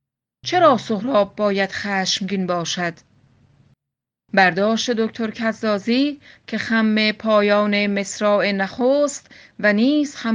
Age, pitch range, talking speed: 30-49, 195-230 Hz, 85 wpm